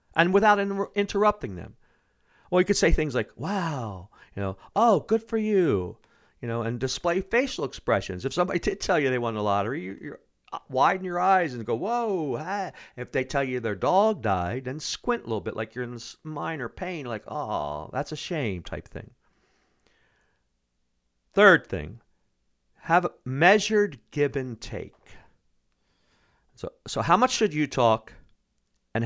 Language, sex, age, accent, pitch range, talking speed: English, male, 50-69, American, 100-165 Hz, 170 wpm